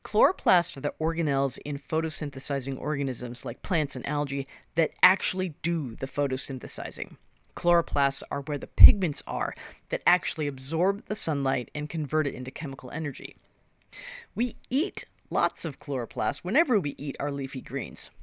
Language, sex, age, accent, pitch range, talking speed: English, female, 40-59, American, 140-185 Hz, 145 wpm